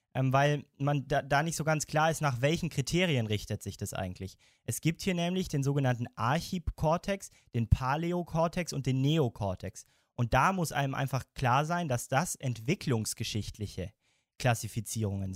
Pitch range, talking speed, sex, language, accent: 110-150 Hz, 150 wpm, male, German, German